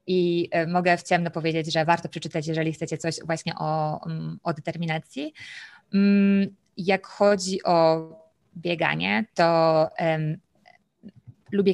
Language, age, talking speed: Polish, 20-39, 105 wpm